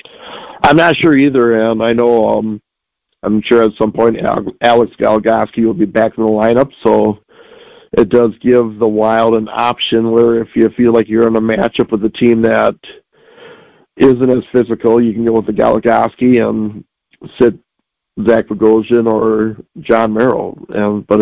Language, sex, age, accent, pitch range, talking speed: English, male, 50-69, American, 110-130 Hz, 165 wpm